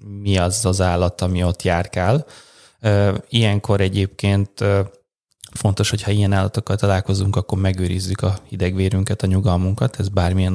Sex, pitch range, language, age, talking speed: male, 100-110 Hz, Hungarian, 20-39, 125 wpm